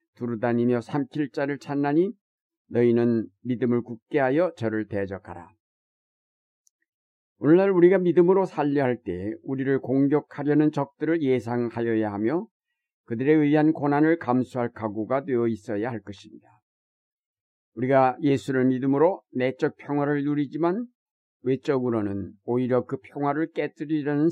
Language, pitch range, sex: Korean, 120-155 Hz, male